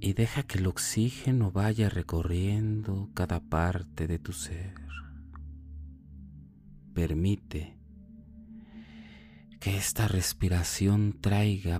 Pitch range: 80-110 Hz